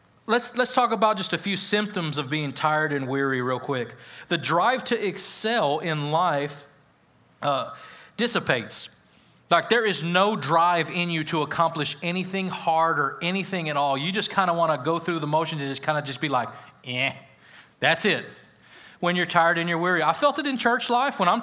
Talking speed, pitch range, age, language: 200 wpm, 140-190 Hz, 30-49, English